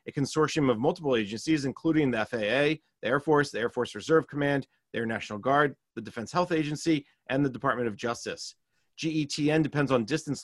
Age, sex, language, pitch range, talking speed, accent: 30-49, male, English, 120-155 Hz, 190 wpm, American